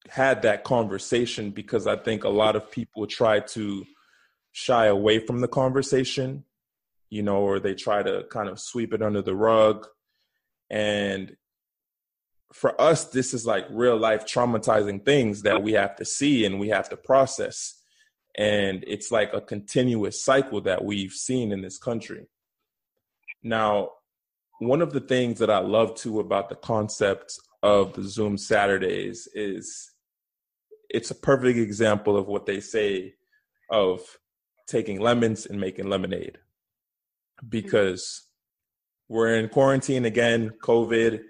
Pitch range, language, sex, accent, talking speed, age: 105-125 Hz, English, male, American, 145 wpm, 20-39